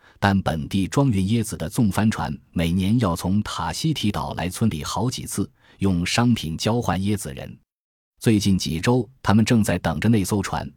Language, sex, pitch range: Chinese, male, 85-115 Hz